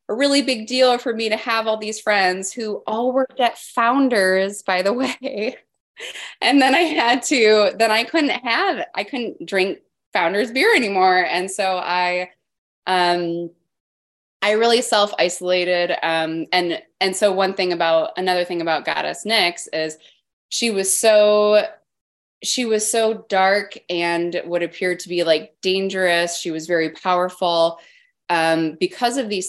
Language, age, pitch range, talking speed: English, 20-39, 160-215 Hz, 155 wpm